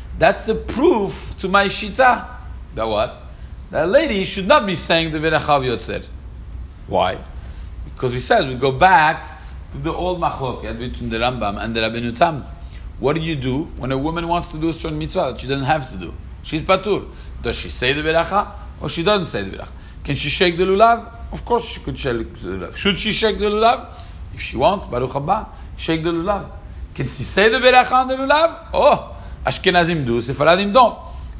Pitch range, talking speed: 100-170 Hz, 205 wpm